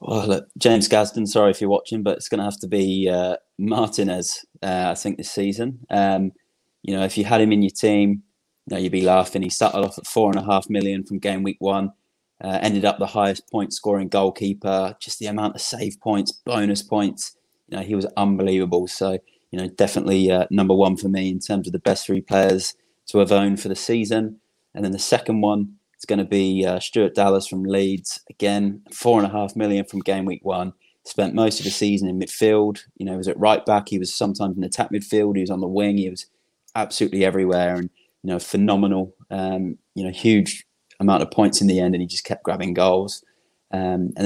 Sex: male